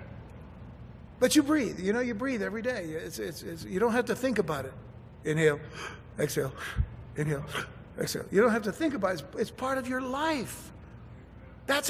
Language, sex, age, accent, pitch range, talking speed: English, male, 60-79, American, 170-265 Hz, 170 wpm